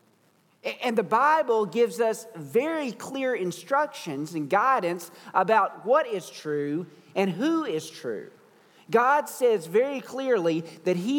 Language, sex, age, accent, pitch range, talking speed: English, male, 40-59, American, 180-260 Hz, 130 wpm